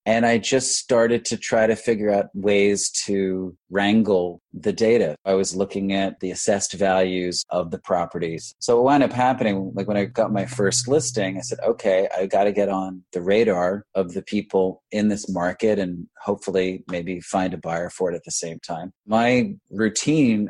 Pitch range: 90-105 Hz